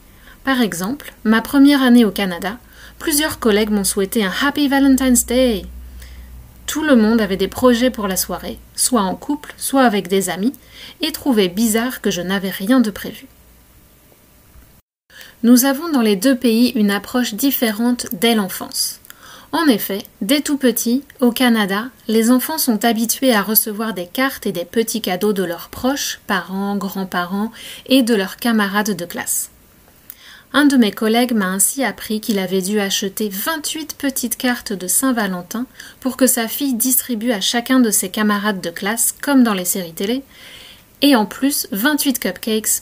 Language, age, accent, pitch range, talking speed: French, 30-49, French, 200-255 Hz, 165 wpm